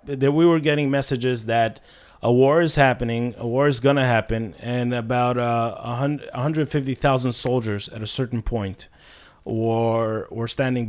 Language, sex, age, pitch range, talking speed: English, male, 30-49, 110-130 Hz, 150 wpm